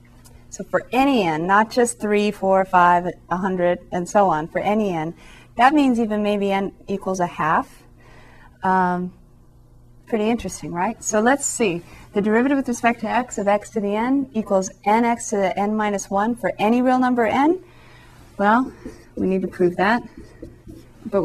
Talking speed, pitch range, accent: 170 wpm, 180-230 Hz, American